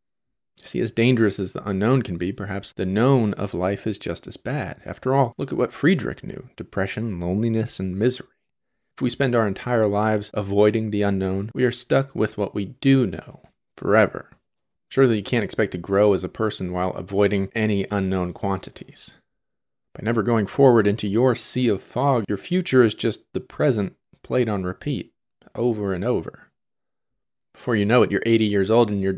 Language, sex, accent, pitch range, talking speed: English, male, American, 100-120 Hz, 185 wpm